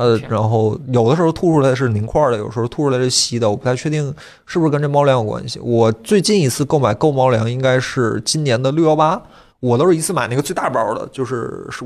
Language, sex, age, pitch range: Chinese, male, 20-39, 120-155 Hz